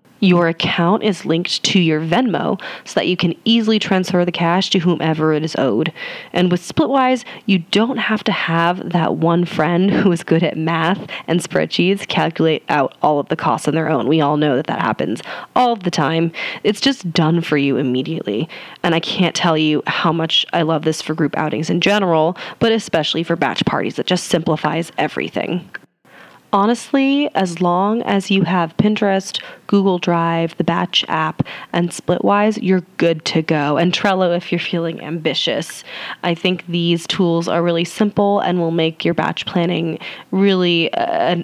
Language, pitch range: English, 165-200 Hz